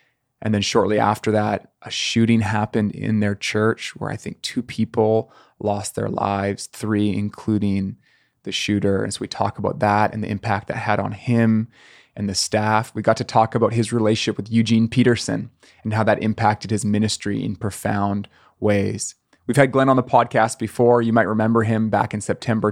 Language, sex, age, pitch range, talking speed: English, male, 20-39, 105-120 Hz, 190 wpm